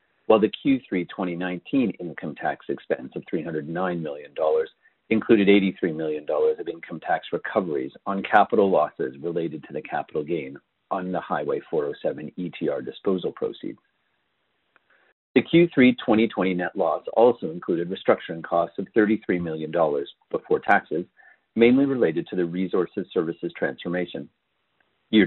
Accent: American